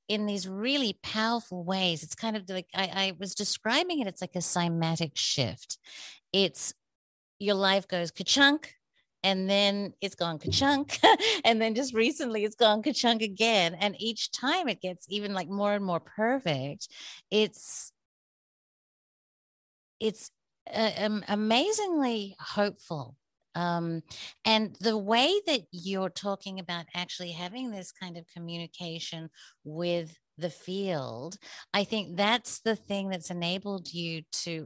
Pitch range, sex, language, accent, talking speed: 170-215 Hz, female, English, American, 140 wpm